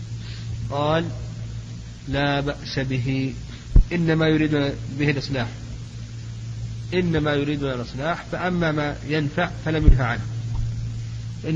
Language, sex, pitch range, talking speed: Arabic, male, 115-140 Hz, 90 wpm